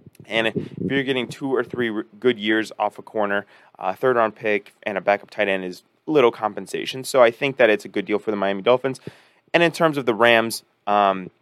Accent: American